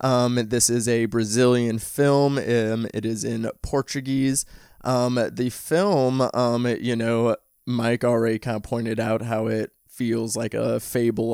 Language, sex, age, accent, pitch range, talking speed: English, male, 20-39, American, 115-125 Hz, 150 wpm